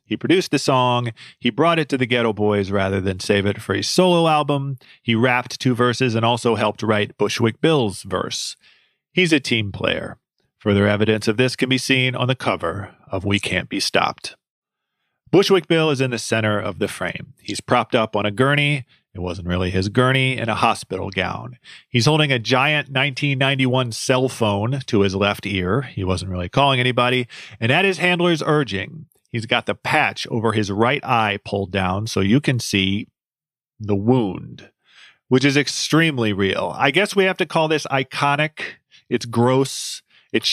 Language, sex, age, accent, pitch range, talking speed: English, male, 40-59, American, 105-135 Hz, 185 wpm